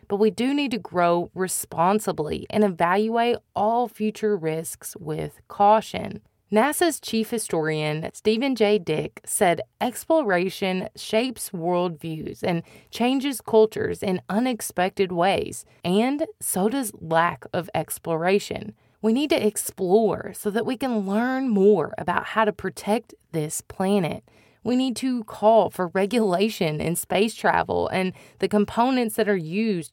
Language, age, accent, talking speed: English, 20-39, American, 135 wpm